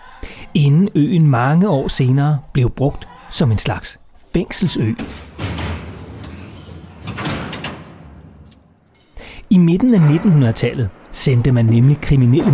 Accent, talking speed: native, 90 wpm